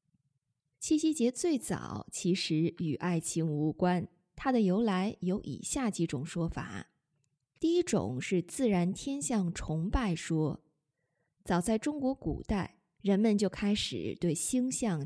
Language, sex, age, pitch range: Chinese, female, 20-39, 165-230 Hz